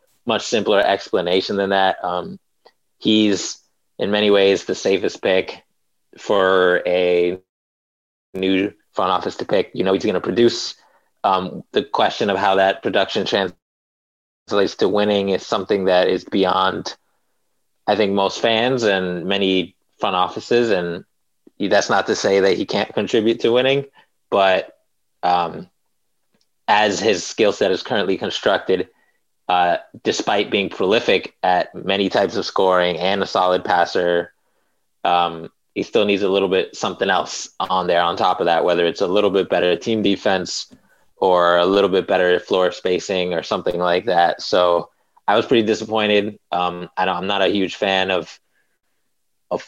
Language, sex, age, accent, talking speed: English, male, 30-49, American, 155 wpm